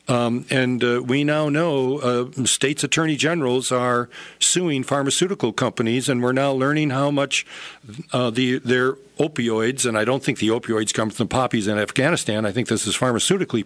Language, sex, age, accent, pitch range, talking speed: English, male, 50-69, American, 125-160 Hz, 175 wpm